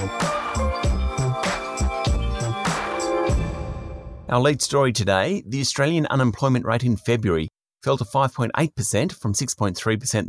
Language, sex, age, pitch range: English, male, 30-49, 105-130 Hz